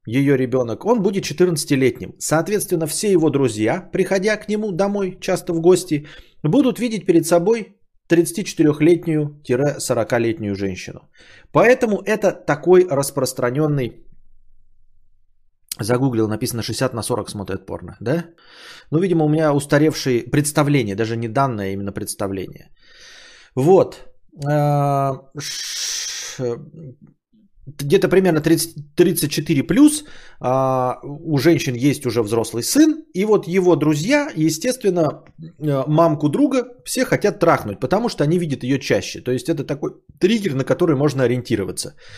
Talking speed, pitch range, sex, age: 115 wpm, 130-175 Hz, male, 30-49